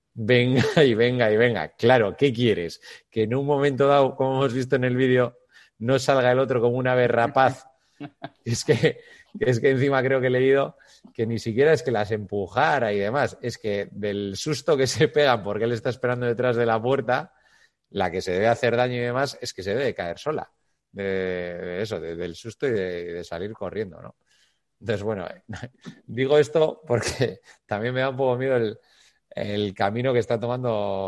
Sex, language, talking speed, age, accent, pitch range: male, Spanish, 205 wpm, 30-49, Spanish, 100-130 Hz